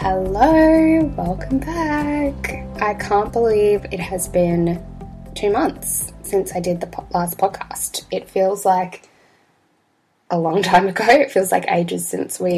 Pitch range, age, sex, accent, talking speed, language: 175-195 Hz, 10-29, female, Australian, 145 wpm, English